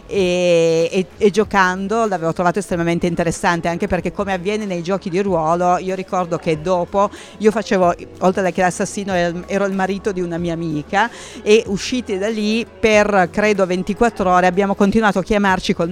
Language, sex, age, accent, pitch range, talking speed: Italian, female, 40-59, native, 170-200 Hz, 170 wpm